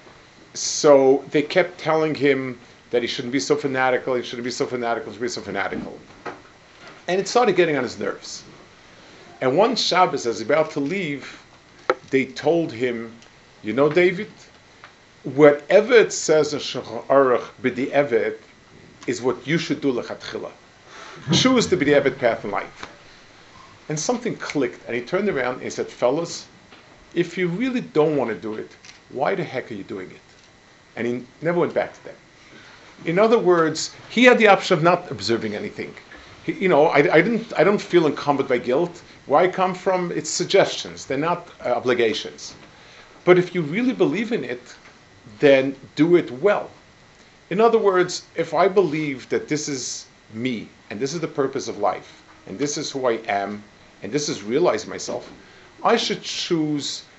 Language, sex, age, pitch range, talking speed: English, male, 50-69, 130-180 Hz, 180 wpm